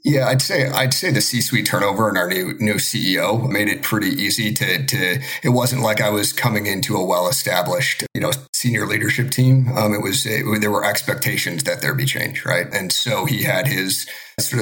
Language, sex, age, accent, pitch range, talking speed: English, male, 40-59, American, 105-135 Hz, 215 wpm